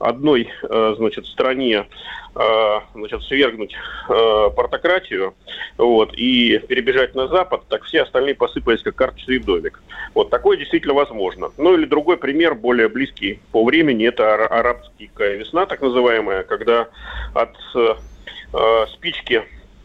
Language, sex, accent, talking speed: Russian, male, native, 110 wpm